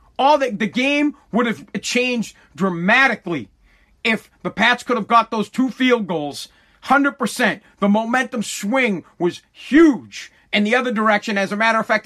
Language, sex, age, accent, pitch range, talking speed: English, male, 40-59, American, 190-230 Hz, 165 wpm